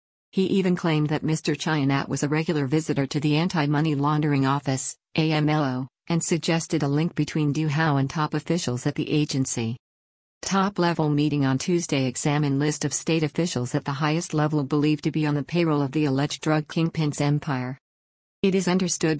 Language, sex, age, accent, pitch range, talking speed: English, female, 50-69, American, 140-160 Hz, 175 wpm